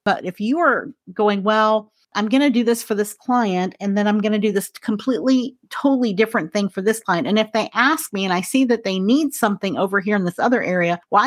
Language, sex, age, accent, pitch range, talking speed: English, female, 40-59, American, 185-250 Hz, 250 wpm